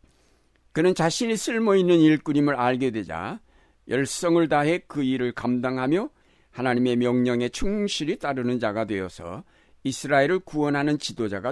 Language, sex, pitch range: Korean, male, 110-155 Hz